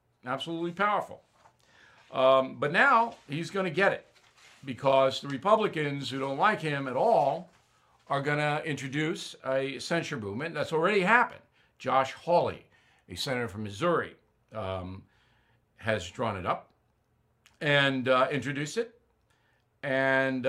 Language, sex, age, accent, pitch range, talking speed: English, male, 60-79, American, 130-185 Hz, 130 wpm